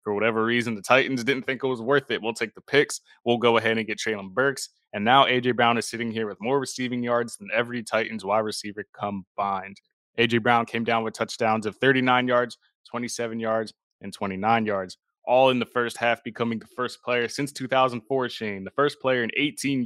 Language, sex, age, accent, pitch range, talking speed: English, male, 20-39, American, 110-130 Hz, 210 wpm